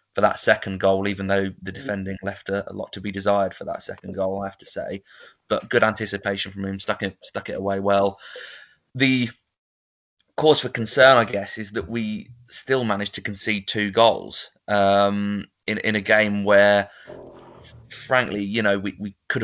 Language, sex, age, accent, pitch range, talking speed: English, male, 20-39, British, 100-110 Hz, 190 wpm